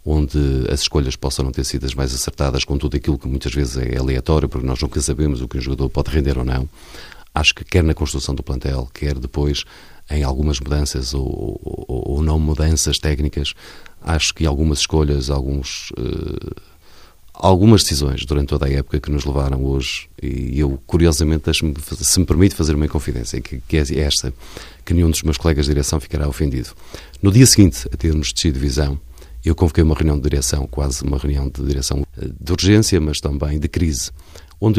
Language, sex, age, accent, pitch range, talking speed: Portuguese, male, 40-59, Portuguese, 70-85 Hz, 195 wpm